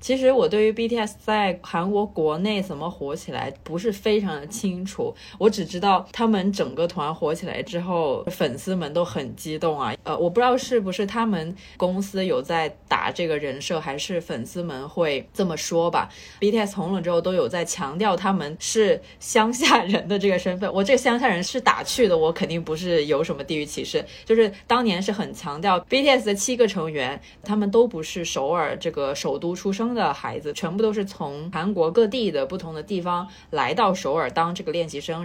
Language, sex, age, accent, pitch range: Chinese, female, 20-39, native, 165-215 Hz